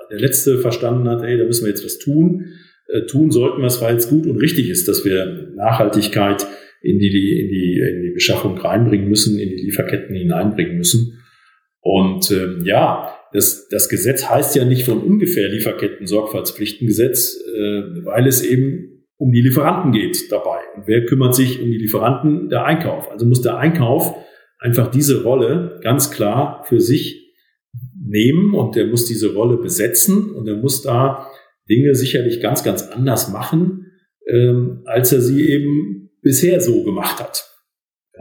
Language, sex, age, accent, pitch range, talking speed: German, male, 40-59, German, 105-140 Hz, 170 wpm